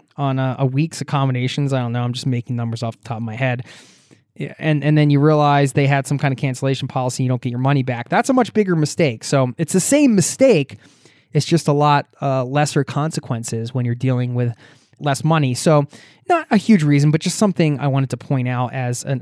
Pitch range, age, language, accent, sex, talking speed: 130-155 Hz, 20-39, English, American, male, 230 wpm